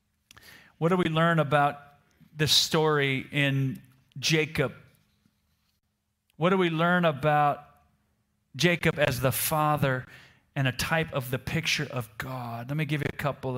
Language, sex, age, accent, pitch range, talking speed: Italian, male, 40-59, American, 130-180 Hz, 140 wpm